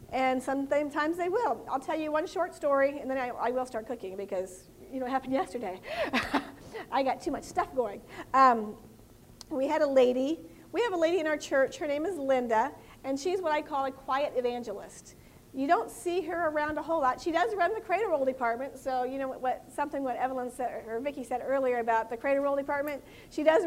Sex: female